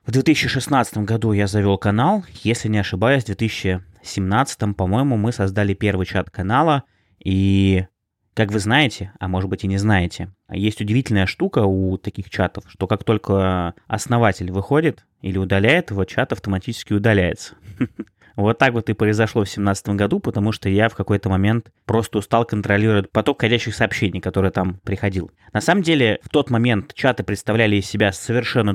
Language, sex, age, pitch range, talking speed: Russian, male, 20-39, 100-115 Hz, 165 wpm